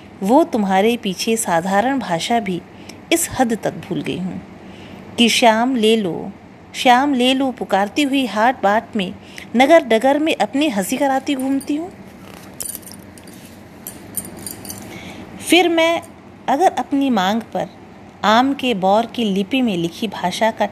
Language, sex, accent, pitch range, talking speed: Hindi, female, native, 195-265 Hz, 135 wpm